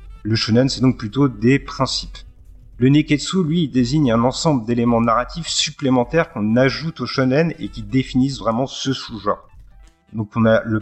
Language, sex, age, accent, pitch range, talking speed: French, male, 40-59, French, 110-135 Hz, 170 wpm